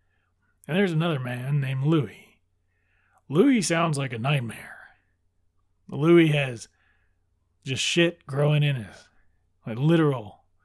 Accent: American